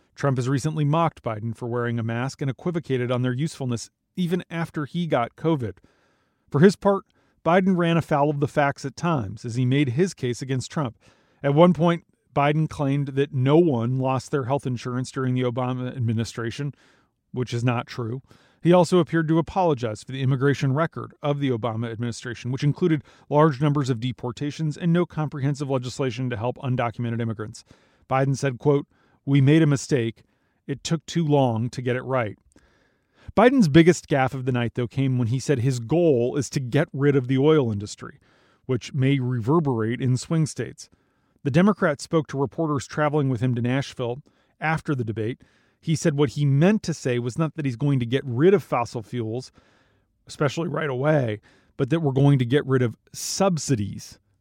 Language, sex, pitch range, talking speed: English, male, 120-155 Hz, 185 wpm